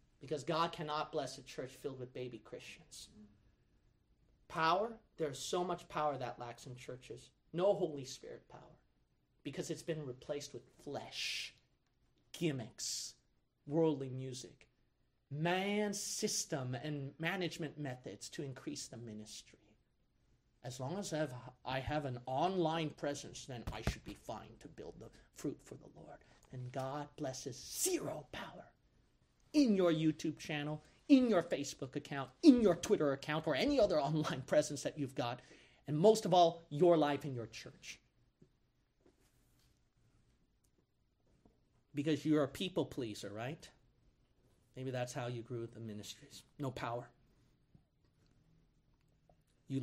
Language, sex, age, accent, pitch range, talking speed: English, male, 40-59, American, 125-160 Hz, 135 wpm